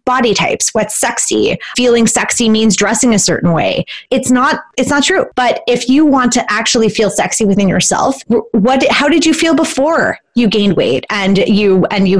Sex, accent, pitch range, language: female, American, 200-255 Hz, English